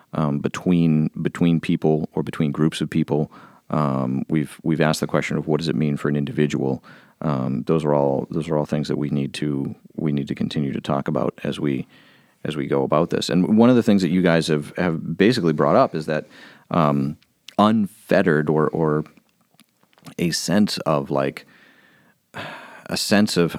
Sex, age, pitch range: male, 30-49, 75-90 Hz